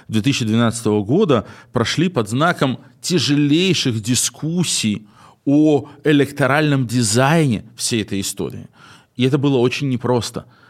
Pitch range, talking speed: 120-150 Hz, 100 wpm